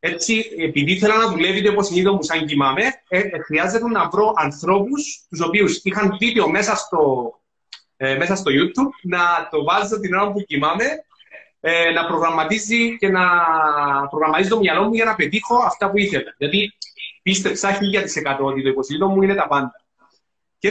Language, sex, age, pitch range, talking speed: Greek, male, 30-49, 160-205 Hz, 170 wpm